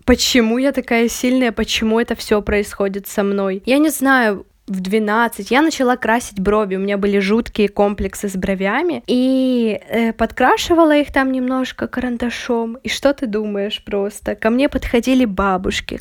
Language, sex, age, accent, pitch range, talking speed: Russian, female, 10-29, native, 210-250 Hz, 155 wpm